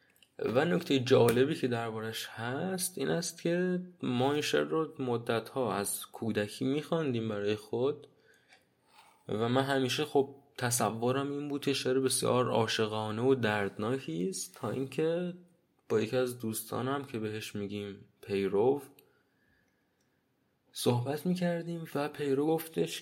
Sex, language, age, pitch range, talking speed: male, Persian, 20-39, 105-140 Hz, 125 wpm